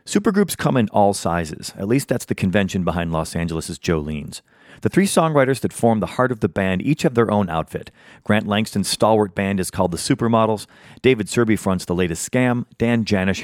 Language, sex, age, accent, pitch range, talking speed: English, male, 40-59, American, 95-125 Hz, 200 wpm